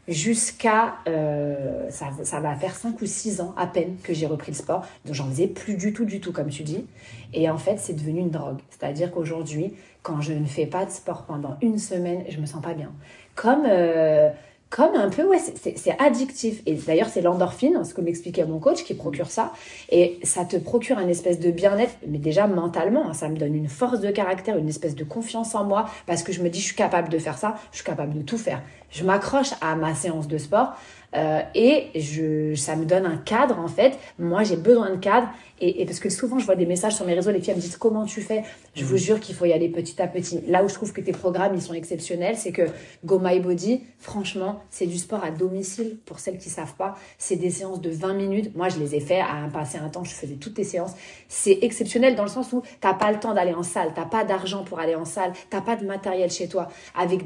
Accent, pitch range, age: French, 165-210 Hz, 30-49